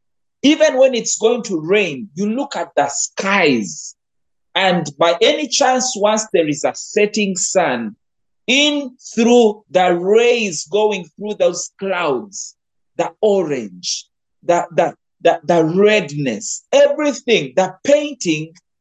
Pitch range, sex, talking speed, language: 150-225 Hz, male, 125 wpm, English